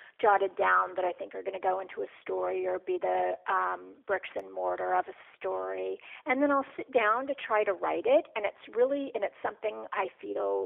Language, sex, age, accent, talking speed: English, female, 40-59, American, 225 wpm